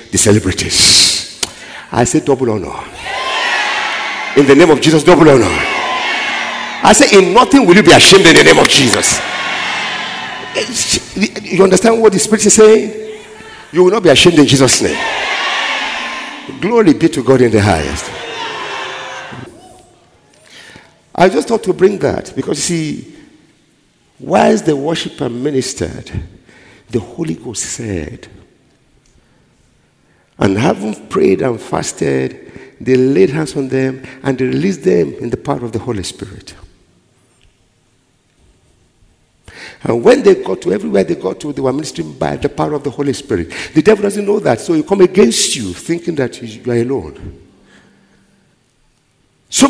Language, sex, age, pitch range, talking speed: English, male, 50-69, 120-185 Hz, 145 wpm